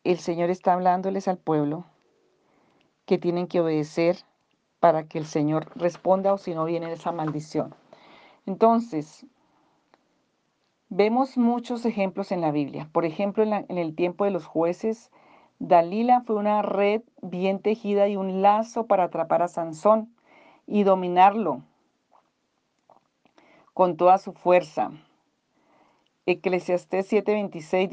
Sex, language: female, Spanish